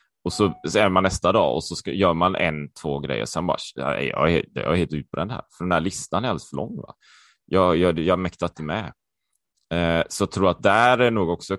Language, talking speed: Swedish, 260 wpm